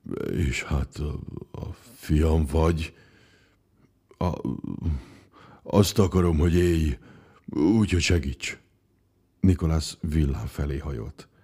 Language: Hungarian